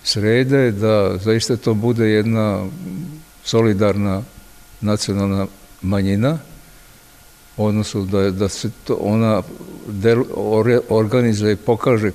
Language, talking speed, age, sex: Croatian, 95 wpm, 60-79, male